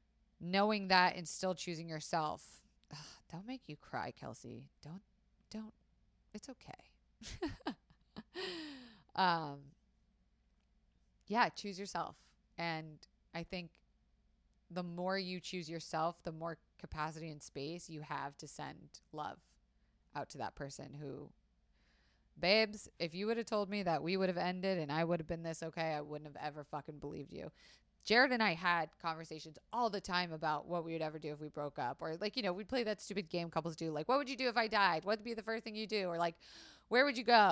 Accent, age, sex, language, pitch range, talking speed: American, 20-39, female, English, 155-200 Hz, 190 wpm